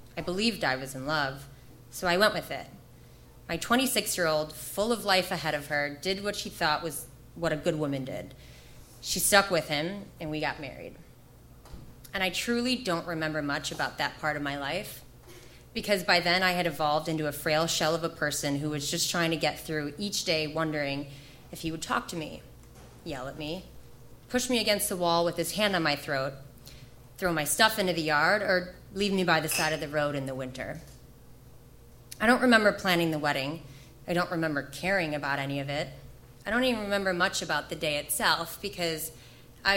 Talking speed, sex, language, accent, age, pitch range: 205 wpm, female, English, American, 20-39, 140-185 Hz